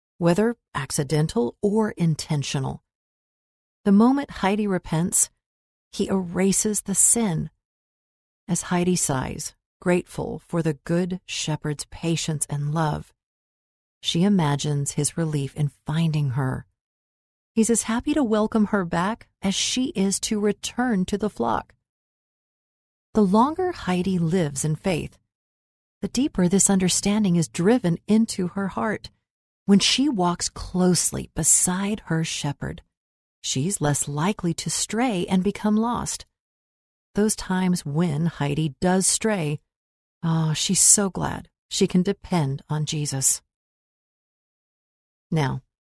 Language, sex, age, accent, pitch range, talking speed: English, female, 40-59, American, 150-200 Hz, 120 wpm